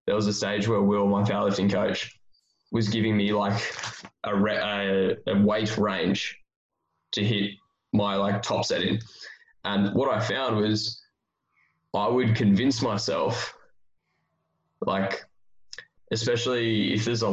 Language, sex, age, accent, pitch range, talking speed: English, male, 10-29, Australian, 100-115 Hz, 130 wpm